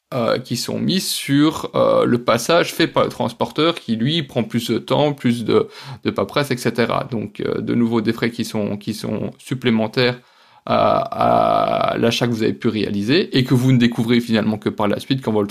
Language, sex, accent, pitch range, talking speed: French, male, French, 115-155 Hz, 210 wpm